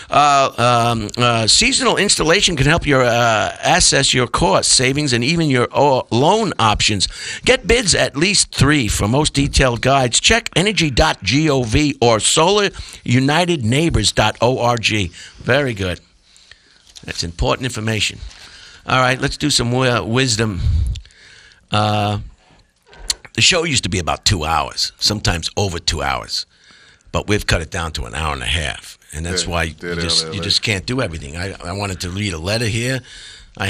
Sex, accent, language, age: male, American, English, 50-69